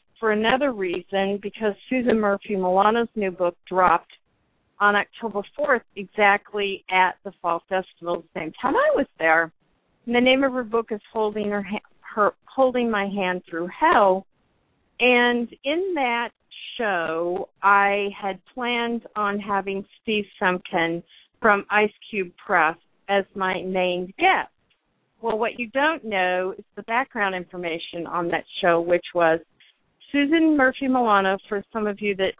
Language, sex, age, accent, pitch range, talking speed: English, female, 50-69, American, 185-225 Hz, 150 wpm